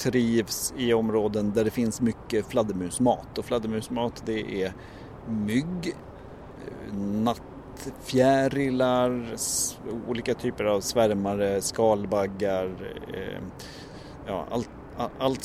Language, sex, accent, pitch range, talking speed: Swedish, male, native, 105-125 Hz, 90 wpm